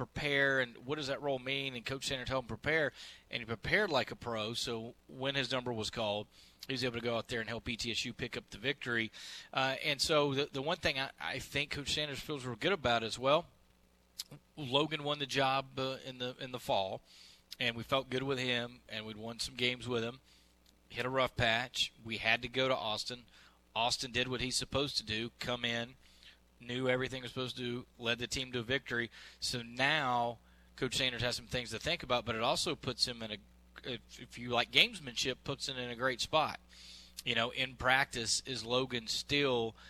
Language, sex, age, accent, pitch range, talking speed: English, male, 30-49, American, 115-135 Hz, 220 wpm